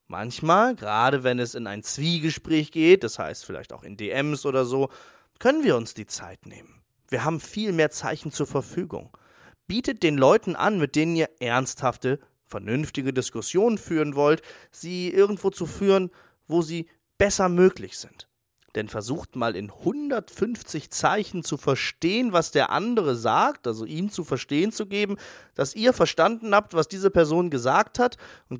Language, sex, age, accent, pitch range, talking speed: German, male, 30-49, German, 135-195 Hz, 165 wpm